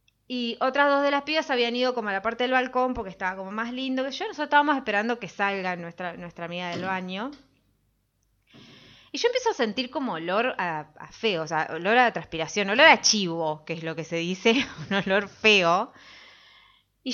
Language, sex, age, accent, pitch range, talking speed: Spanish, female, 20-39, Argentinian, 205-290 Hz, 205 wpm